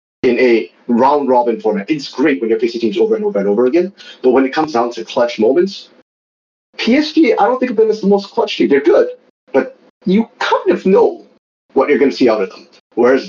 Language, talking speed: English, 230 wpm